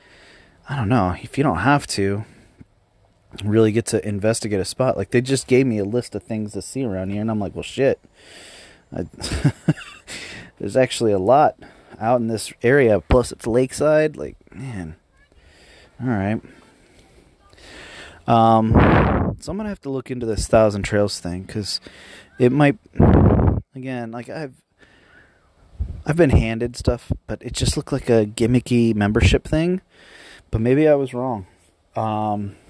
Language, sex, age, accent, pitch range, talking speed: English, male, 30-49, American, 100-125 Hz, 155 wpm